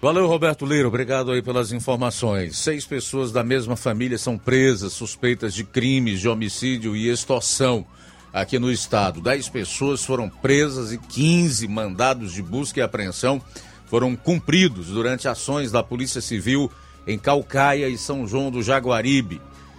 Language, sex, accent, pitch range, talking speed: Portuguese, male, Brazilian, 115-145 Hz, 150 wpm